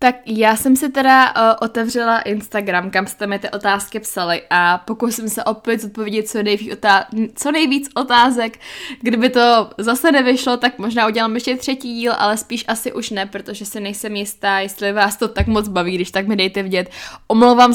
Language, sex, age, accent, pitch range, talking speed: Czech, female, 10-29, native, 210-265 Hz, 190 wpm